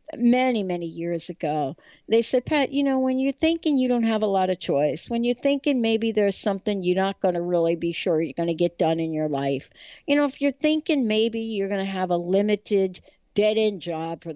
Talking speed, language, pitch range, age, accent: 230 wpm, English, 180-230 Hz, 60-79, American